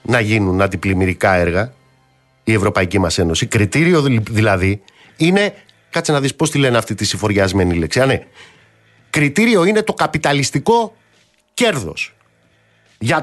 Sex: male